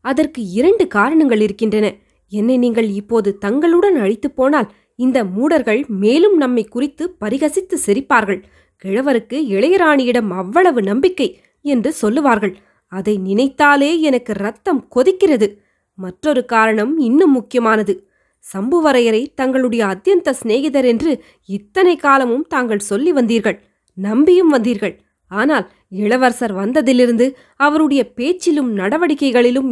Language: Tamil